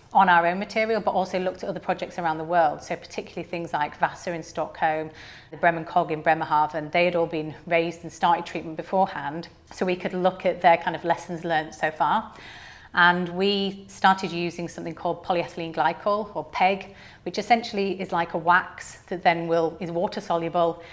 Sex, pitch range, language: female, 160-185 Hz, English